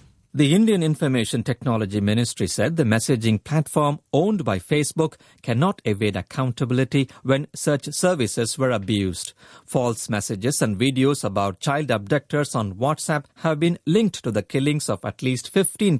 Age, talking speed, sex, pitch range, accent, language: 50-69, 145 wpm, male, 125-180 Hz, Indian, English